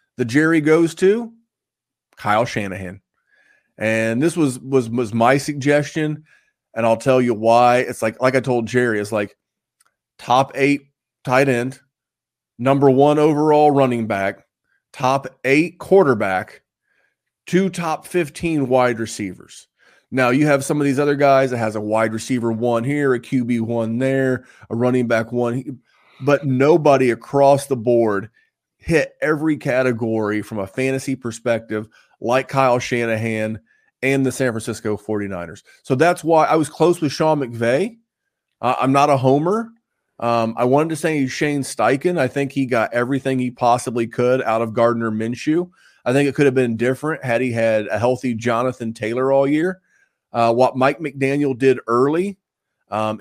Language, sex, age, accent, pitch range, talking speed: English, male, 30-49, American, 115-145 Hz, 160 wpm